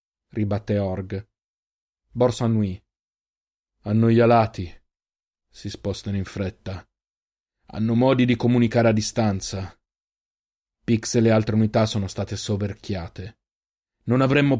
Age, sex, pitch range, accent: 30-49, male, 100-115 Hz, native